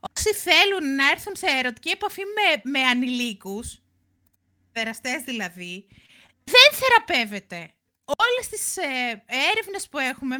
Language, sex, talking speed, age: Greek, female, 115 wpm, 30-49